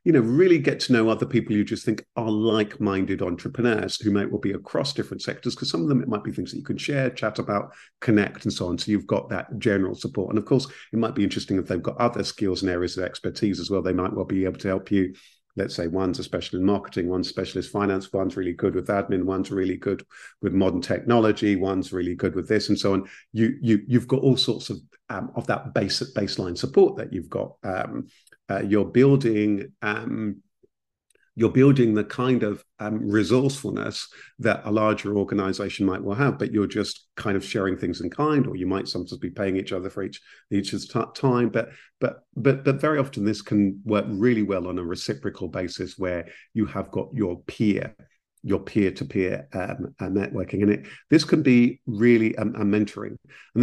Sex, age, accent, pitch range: male, 50-69, British, 95-115 Hz